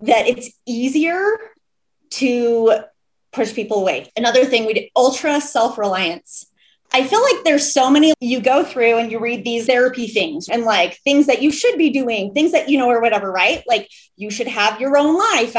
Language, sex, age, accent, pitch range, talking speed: English, female, 20-39, American, 220-290 Hz, 195 wpm